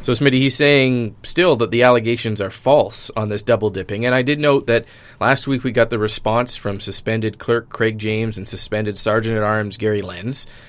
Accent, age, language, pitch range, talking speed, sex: American, 30-49, English, 105-120 Hz, 210 wpm, male